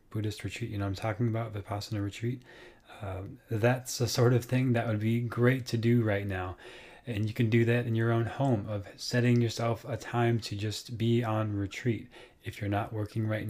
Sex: male